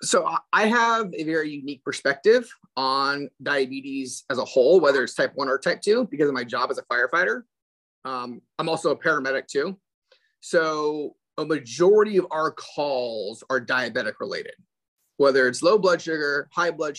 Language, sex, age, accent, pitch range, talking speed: English, male, 30-49, American, 130-180 Hz, 170 wpm